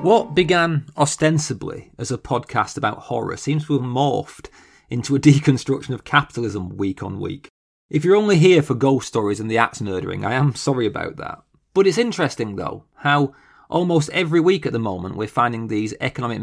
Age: 30-49